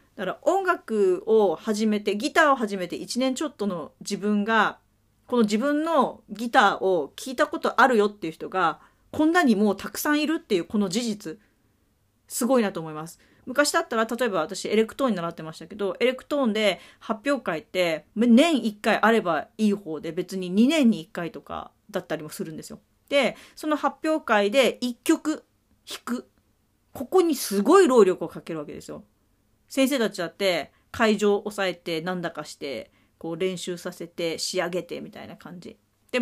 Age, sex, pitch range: 40-59, female, 175-265 Hz